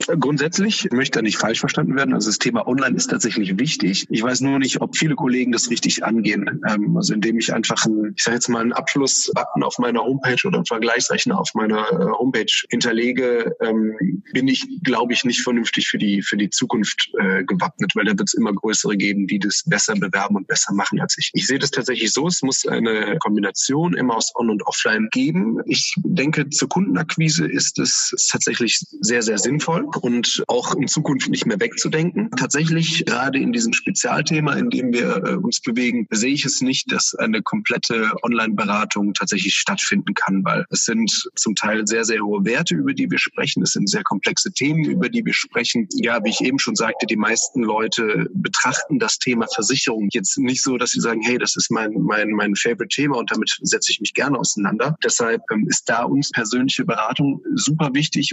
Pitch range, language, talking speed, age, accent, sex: 115-165 Hz, German, 195 wpm, 20-39, German, male